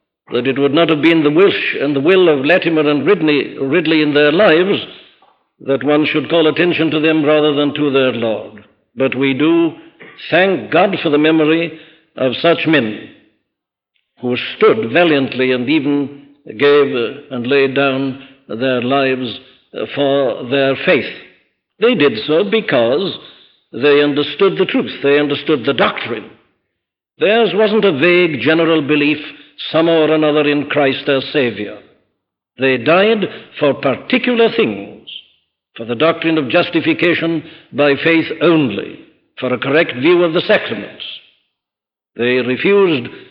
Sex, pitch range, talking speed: male, 135-170 Hz, 140 wpm